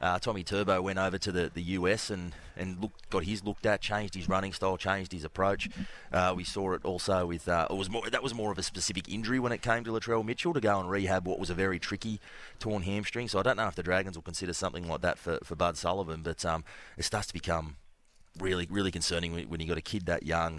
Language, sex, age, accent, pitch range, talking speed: English, male, 30-49, Australian, 85-95 Hz, 260 wpm